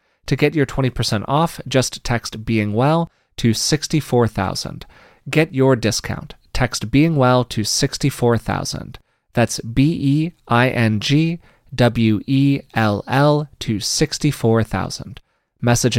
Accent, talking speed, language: American, 120 wpm, English